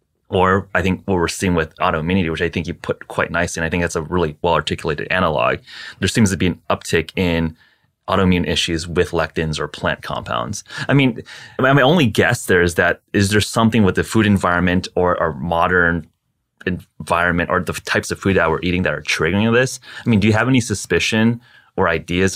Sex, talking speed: male, 205 wpm